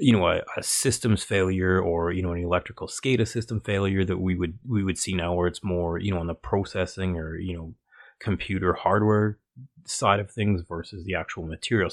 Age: 30-49